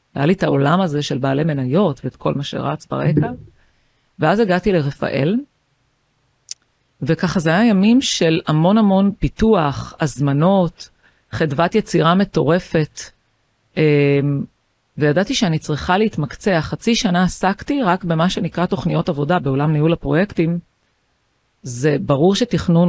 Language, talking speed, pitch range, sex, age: Hebrew, 120 wpm, 140-190 Hz, female, 40-59